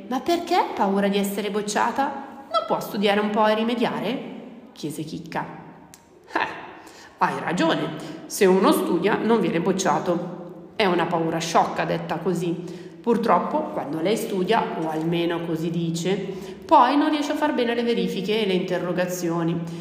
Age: 30-49